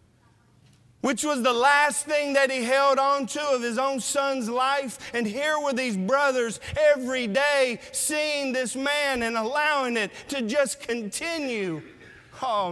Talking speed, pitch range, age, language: 150 wpm, 230-290 Hz, 40-59, English